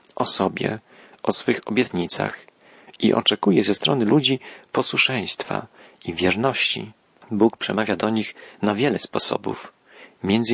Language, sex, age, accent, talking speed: Polish, male, 40-59, native, 120 wpm